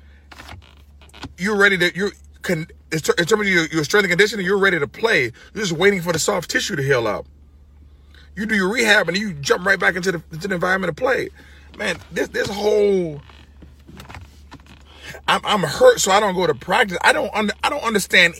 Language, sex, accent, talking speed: English, male, American, 200 wpm